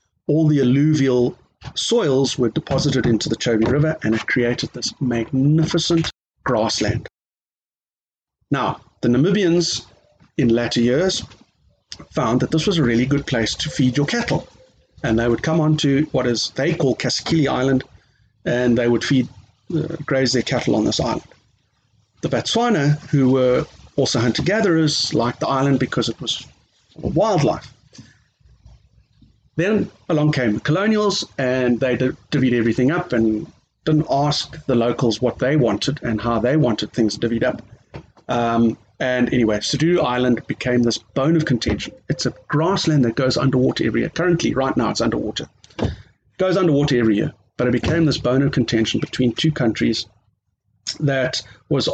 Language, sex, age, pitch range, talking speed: English, male, 40-59, 120-150 Hz, 155 wpm